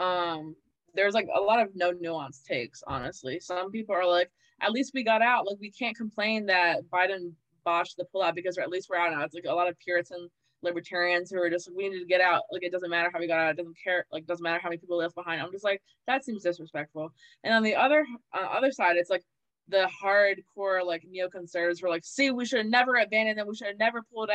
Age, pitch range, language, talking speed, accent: 20-39, 175-210 Hz, English, 255 wpm, American